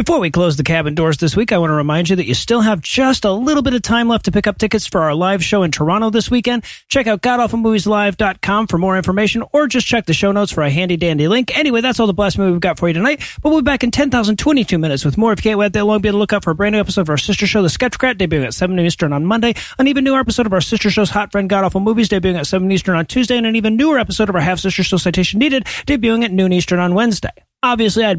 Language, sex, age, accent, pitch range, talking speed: English, male, 40-59, American, 175-225 Hz, 295 wpm